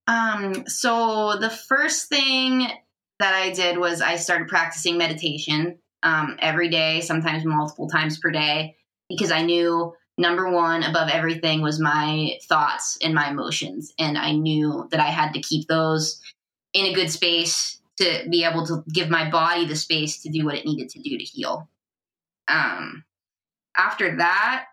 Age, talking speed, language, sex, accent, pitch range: 20-39, 165 wpm, English, female, American, 160-215 Hz